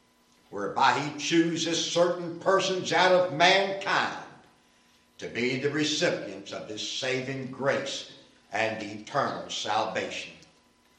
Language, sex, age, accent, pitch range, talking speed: English, male, 60-79, American, 115-175 Hz, 105 wpm